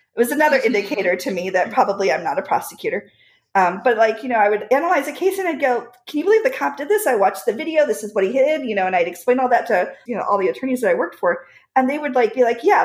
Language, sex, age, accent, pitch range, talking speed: English, female, 40-59, American, 210-305 Hz, 305 wpm